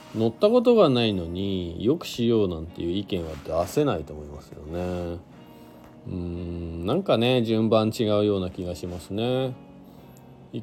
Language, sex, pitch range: Japanese, male, 85-115 Hz